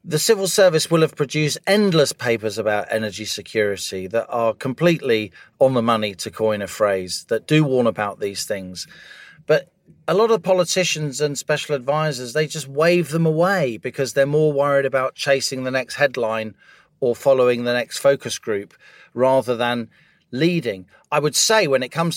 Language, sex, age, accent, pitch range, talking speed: English, male, 40-59, British, 115-155 Hz, 175 wpm